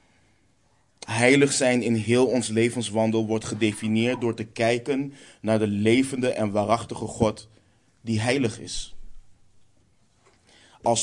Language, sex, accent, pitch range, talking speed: Dutch, male, Dutch, 110-125 Hz, 115 wpm